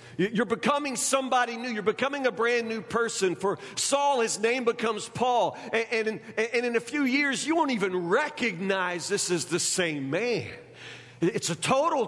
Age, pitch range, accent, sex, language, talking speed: 50-69, 195-260 Hz, American, male, English, 165 wpm